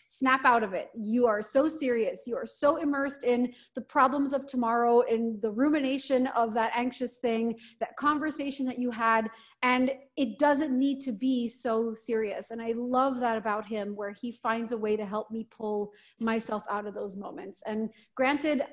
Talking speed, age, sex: 190 wpm, 30-49, female